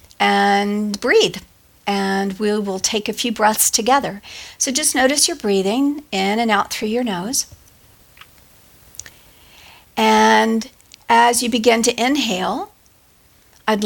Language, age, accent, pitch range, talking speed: English, 50-69, American, 200-240 Hz, 120 wpm